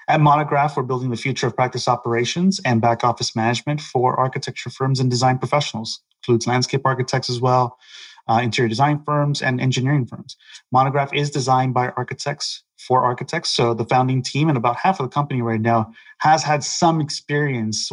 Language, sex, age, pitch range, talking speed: English, male, 30-49, 120-140 Hz, 185 wpm